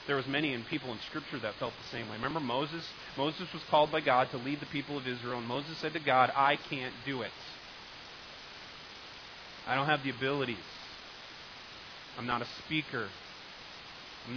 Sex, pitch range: male, 120-155 Hz